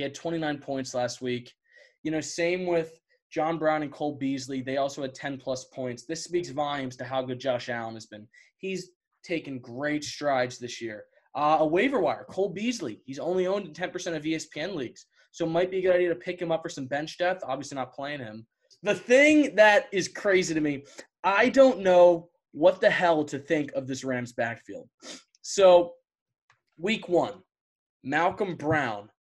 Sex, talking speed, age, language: male, 190 wpm, 20-39, English